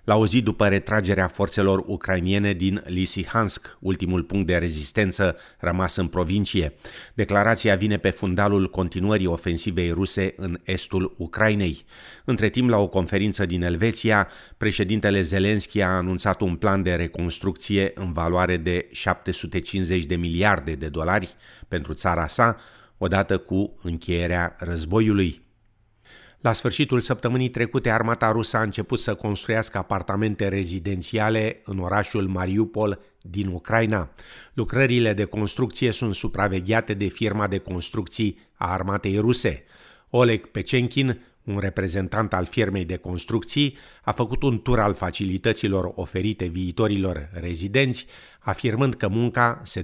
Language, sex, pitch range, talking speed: Romanian, male, 90-110 Hz, 130 wpm